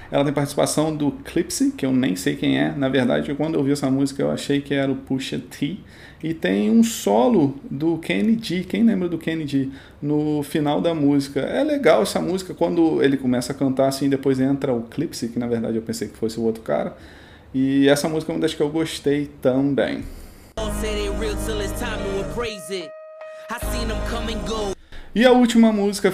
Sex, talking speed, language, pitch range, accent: male, 175 wpm, Portuguese, 125-170 Hz, Brazilian